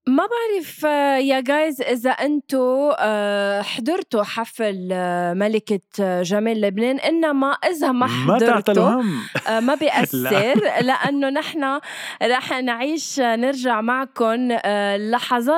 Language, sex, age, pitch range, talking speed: Arabic, female, 20-39, 205-260 Hz, 90 wpm